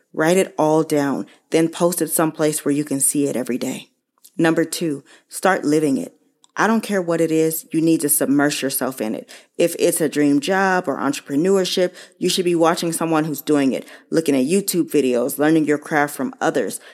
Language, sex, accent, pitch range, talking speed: English, female, American, 145-170 Hz, 200 wpm